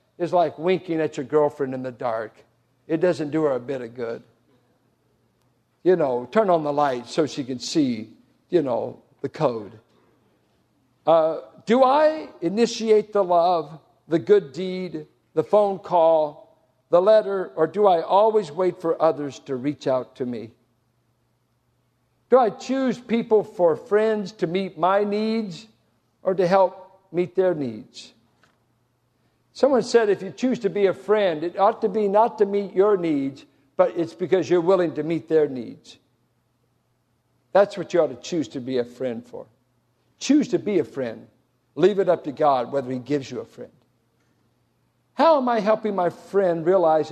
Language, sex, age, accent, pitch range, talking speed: English, male, 60-79, American, 130-195 Hz, 170 wpm